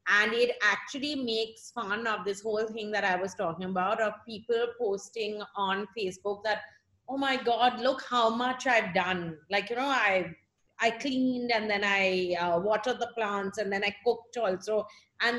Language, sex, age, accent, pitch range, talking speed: English, female, 30-49, Indian, 200-255 Hz, 185 wpm